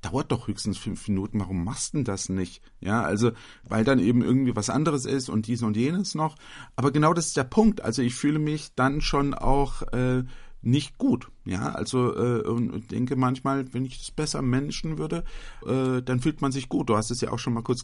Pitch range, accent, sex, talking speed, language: 110-135 Hz, German, male, 225 wpm, German